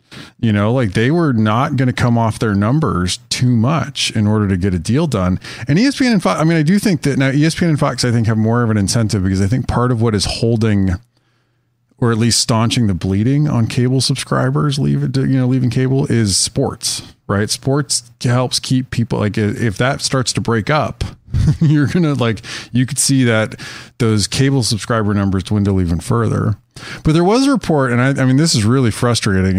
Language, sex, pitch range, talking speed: English, male, 100-130 Hz, 220 wpm